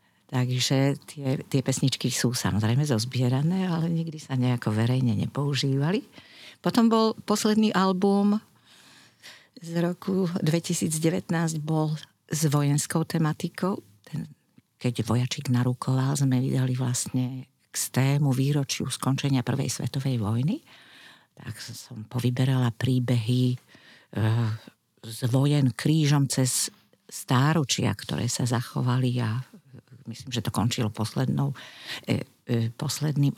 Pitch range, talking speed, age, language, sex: 125-165 Hz, 110 wpm, 50-69, Slovak, female